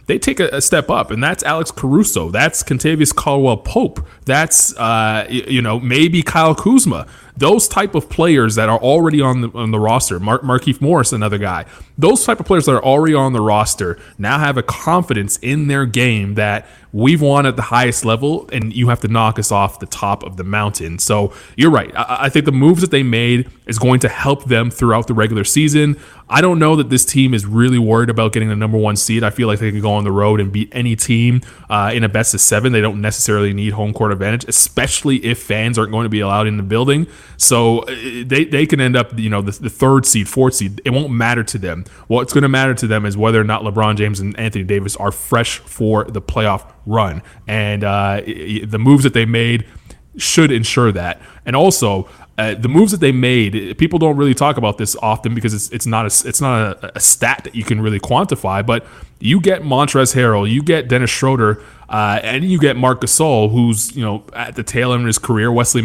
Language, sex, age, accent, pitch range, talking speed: English, male, 20-39, American, 105-130 Hz, 230 wpm